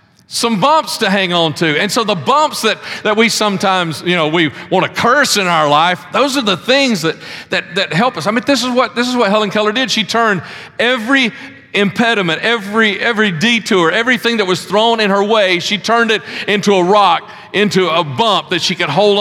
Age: 40-59